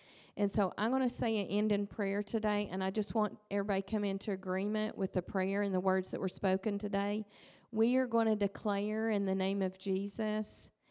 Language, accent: English, American